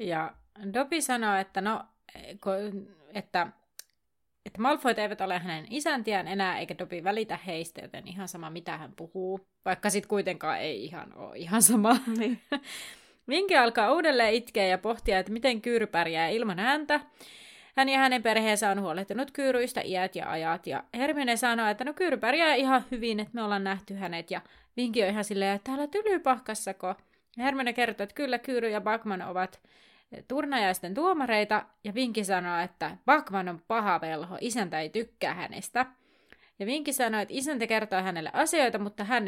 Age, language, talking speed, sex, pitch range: 30-49, Finnish, 160 wpm, female, 190-255 Hz